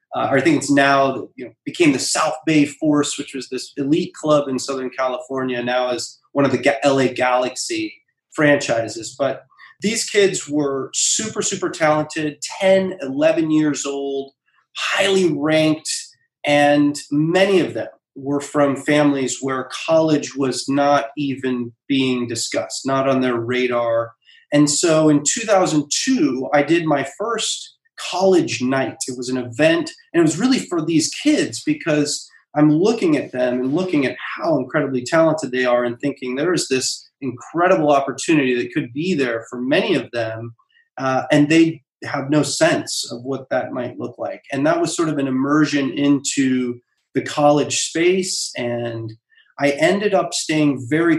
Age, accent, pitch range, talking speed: 30-49, American, 130-165 Hz, 160 wpm